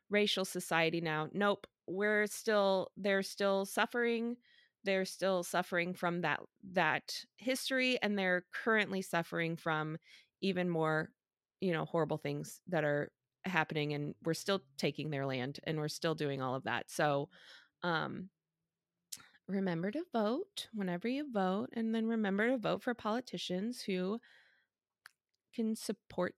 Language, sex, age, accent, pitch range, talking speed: English, female, 20-39, American, 180-240 Hz, 140 wpm